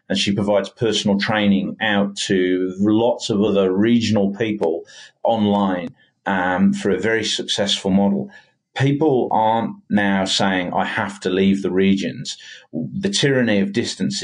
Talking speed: 140 wpm